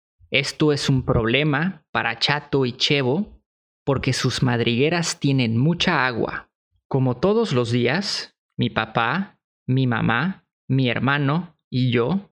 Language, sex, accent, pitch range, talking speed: English, male, Mexican, 125-185 Hz, 125 wpm